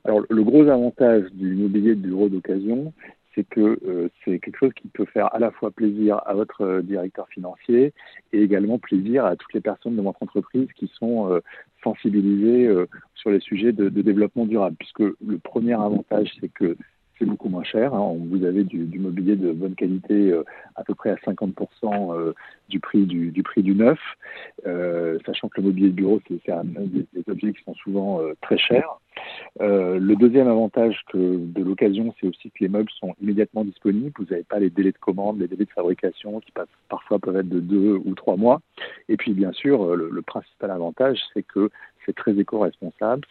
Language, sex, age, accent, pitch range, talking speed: French, male, 50-69, French, 95-105 Hz, 205 wpm